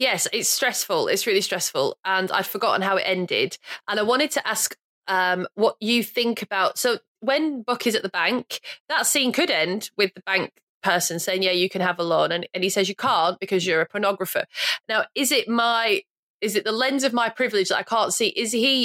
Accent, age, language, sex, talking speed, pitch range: British, 20-39, English, female, 225 wpm, 190-240 Hz